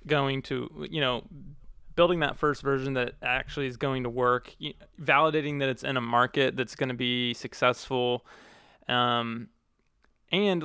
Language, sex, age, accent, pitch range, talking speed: English, male, 20-39, American, 125-150 Hz, 150 wpm